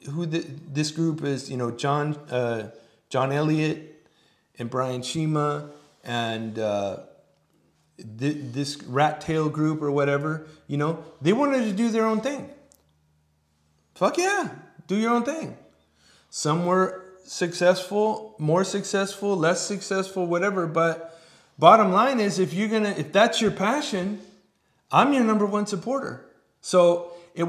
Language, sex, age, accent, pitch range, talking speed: English, male, 30-49, American, 120-175 Hz, 140 wpm